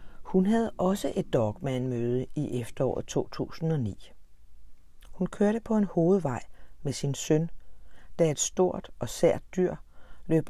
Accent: native